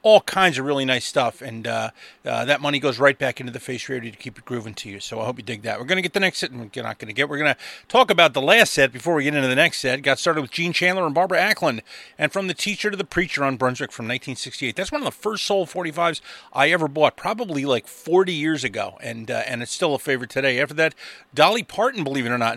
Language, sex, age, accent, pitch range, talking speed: English, male, 30-49, American, 125-165 Hz, 285 wpm